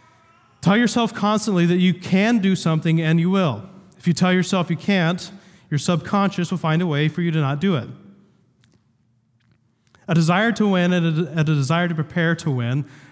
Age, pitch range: 30-49, 140-185 Hz